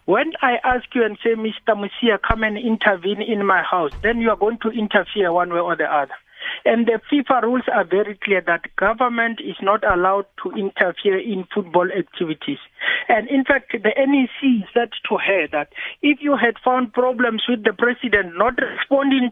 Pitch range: 200-240 Hz